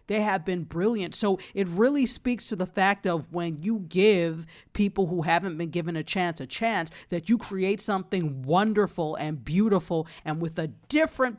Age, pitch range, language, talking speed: 40-59, 165-200 Hz, English, 185 wpm